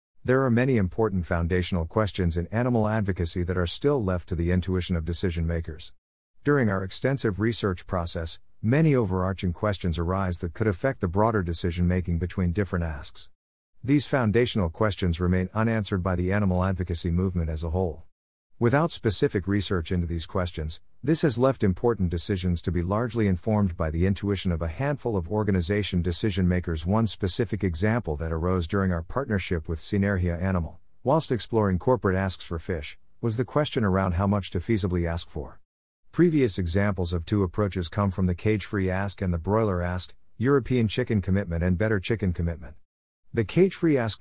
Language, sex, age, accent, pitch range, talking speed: English, male, 50-69, American, 90-110 Hz, 170 wpm